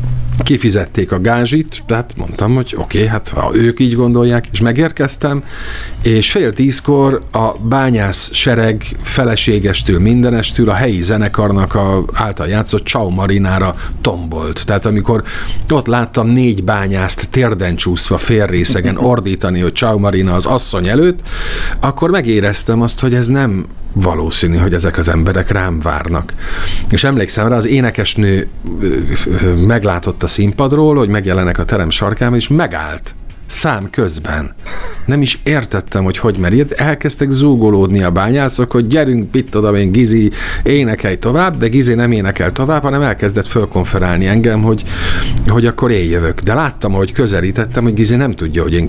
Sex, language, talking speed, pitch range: male, Hungarian, 145 wpm, 90-120 Hz